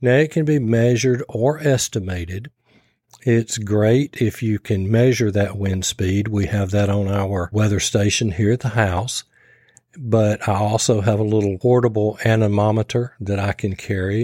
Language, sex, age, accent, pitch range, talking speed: English, male, 50-69, American, 105-125 Hz, 165 wpm